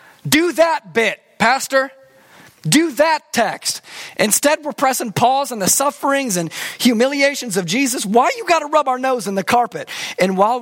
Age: 30-49